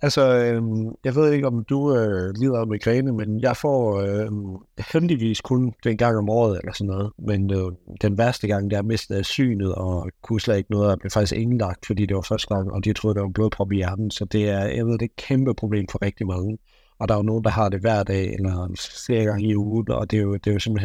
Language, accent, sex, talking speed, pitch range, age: Danish, native, male, 255 wpm, 100-125 Hz, 60-79